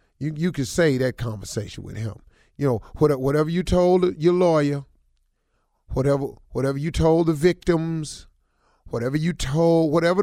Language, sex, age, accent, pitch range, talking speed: English, male, 40-59, American, 115-160 Hz, 145 wpm